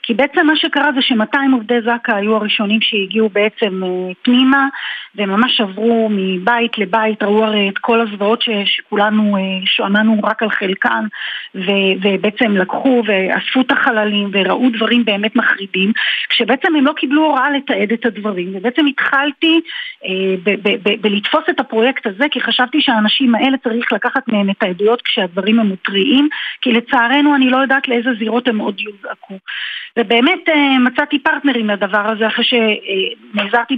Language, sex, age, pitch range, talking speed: Hebrew, female, 40-59, 205-255 Hz, 145 wpm